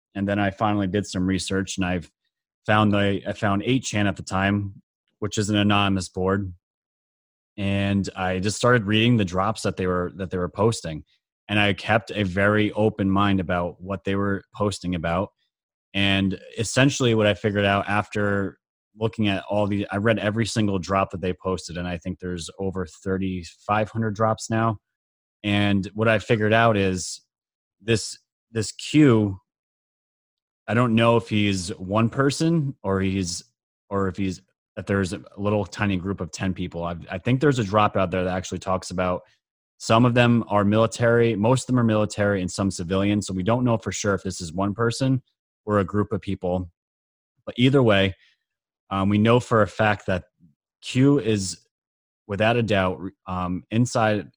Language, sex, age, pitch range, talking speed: English, male, 30-49, 95-110 Hz, 180 wpm